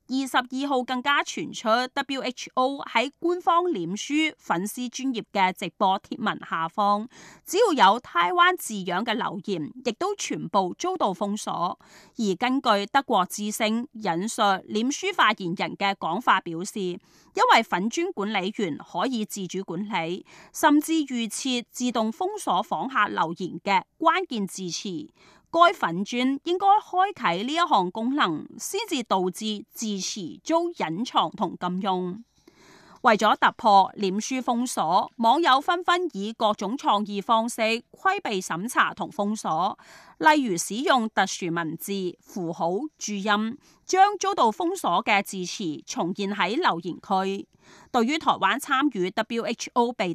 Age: 30-49